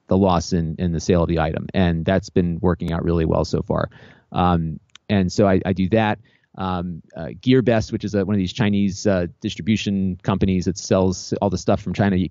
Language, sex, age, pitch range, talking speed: English, male, 30-49, 95-115 Hz, 215 wpm